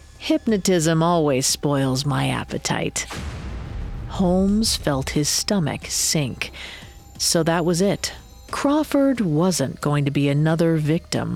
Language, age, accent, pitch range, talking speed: English, 40-59, American, 135-175 Hz, 110 wpm